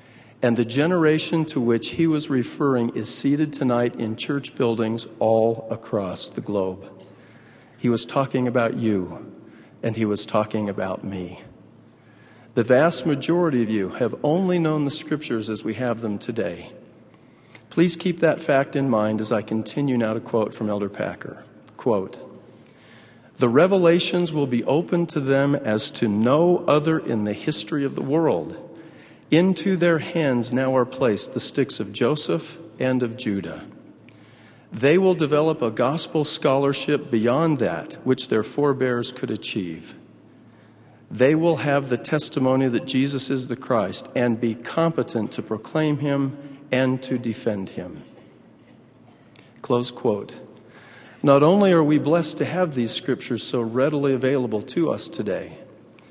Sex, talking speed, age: male, 150 wpm, 50-69